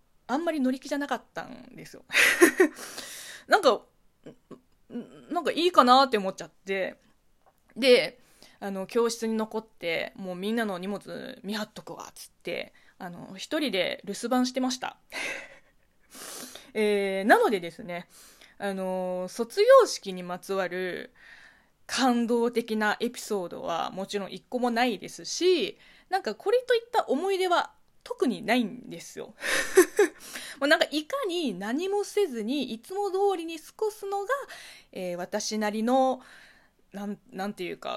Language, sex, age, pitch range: Japanese, female, 20-39, 200-305 Hz